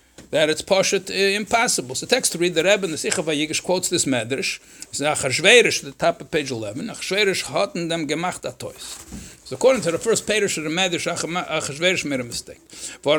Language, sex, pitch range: English, male, 150-200 Hz